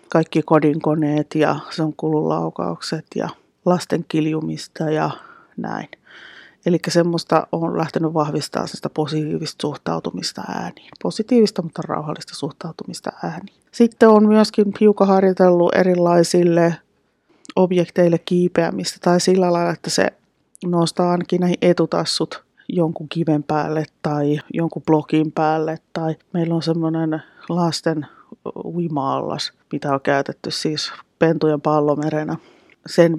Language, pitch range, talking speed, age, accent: Finnish, 155-175 Hz, 110 wpm, 30-49, native